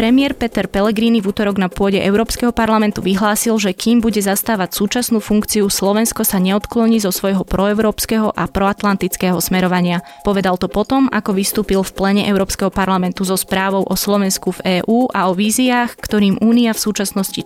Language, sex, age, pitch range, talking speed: Slovak, female, 20-39, 185-220 Hz, 160 wpm